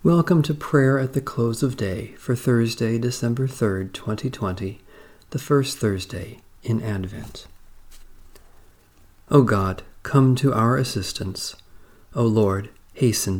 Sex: male